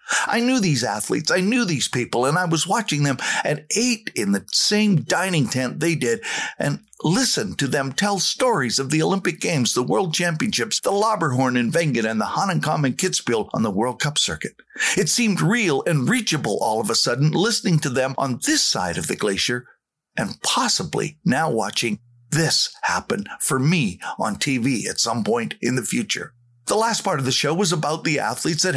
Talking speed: 195 wpm